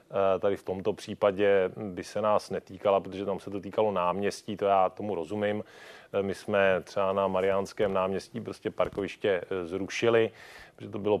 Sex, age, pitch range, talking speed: male, 30-49, 95-105 Hz, 160 wpm